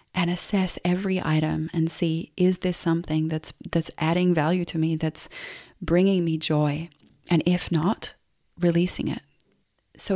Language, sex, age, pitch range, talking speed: English, female, 30-49, 160-180 Hz, 150 wpm